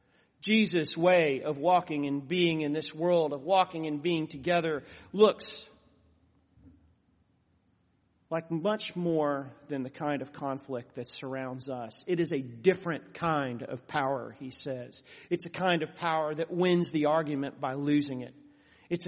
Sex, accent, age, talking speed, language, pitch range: male, American, 40-59, 150 wpm, English, 140-170 Hz